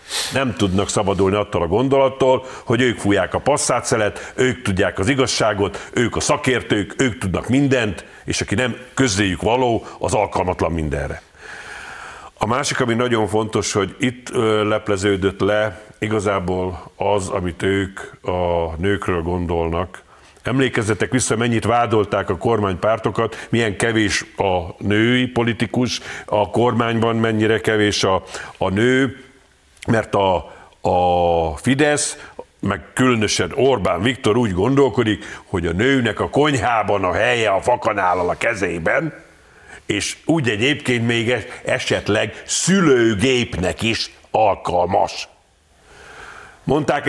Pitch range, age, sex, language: 95-125 Hz, 50-69, male, Hungarian